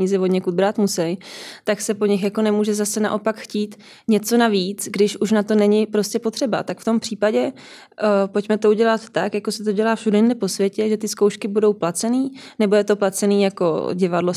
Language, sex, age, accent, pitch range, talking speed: Czech, female, 20-39, native, 190-210 Hz, 195 wpm